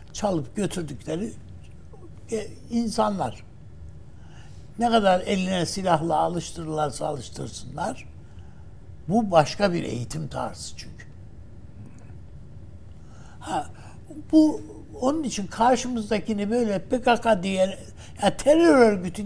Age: 60-79